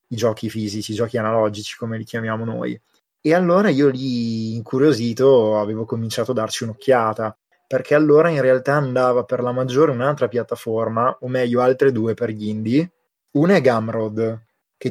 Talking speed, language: 165 wpm, Italian